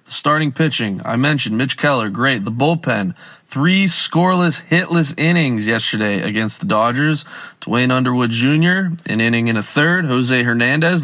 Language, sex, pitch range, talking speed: English, male, 125-155 Hz, 145 wpm